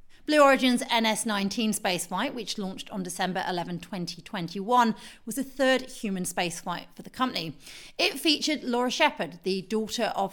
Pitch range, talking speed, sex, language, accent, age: 195-255 Hz, 145 wpm, female, English, British, 30-49